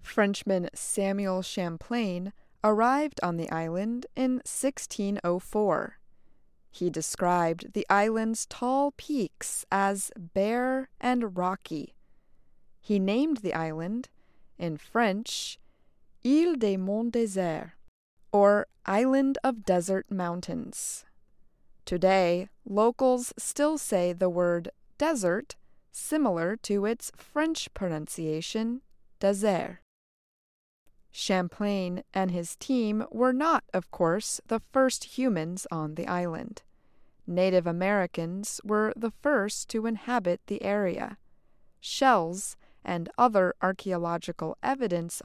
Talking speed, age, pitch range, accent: 100 wpm, 20-39, 180-235 Hz, American